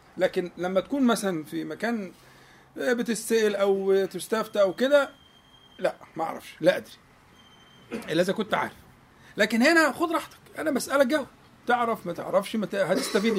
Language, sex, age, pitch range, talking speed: Arabic, male, 50-69, 155-255 Hz, 150 wpm